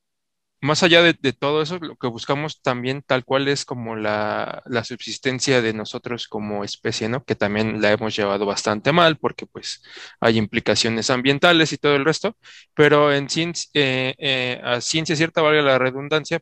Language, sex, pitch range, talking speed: Spanish, male, 120-145 Hz, 175 wpm